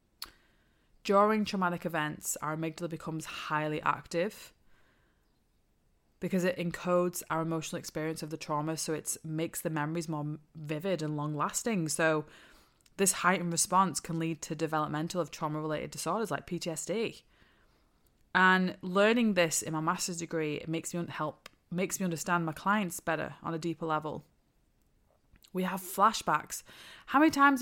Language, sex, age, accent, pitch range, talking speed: English, female, 20-39, British, 160-185 Hz, 140 wpm